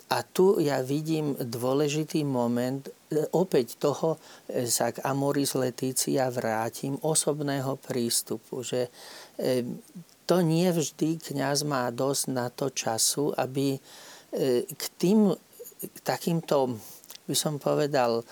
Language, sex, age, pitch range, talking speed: Slovak, male, 40-59, 125-155 Hz, 110 wpm